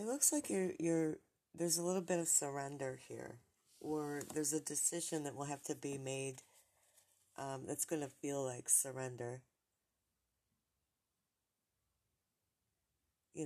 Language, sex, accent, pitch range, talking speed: English, female, American, 135-160 Hz, 130 wpm